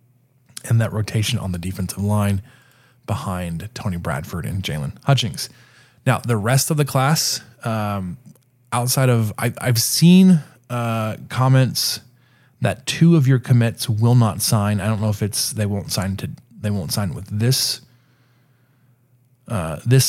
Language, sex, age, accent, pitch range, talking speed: English, male, 20-39, American, 110-130 Hz, 150 wpm